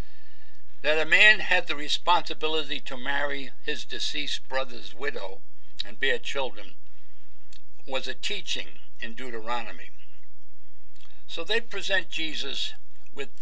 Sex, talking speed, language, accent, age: male, 110 wpm, English, American, 60-79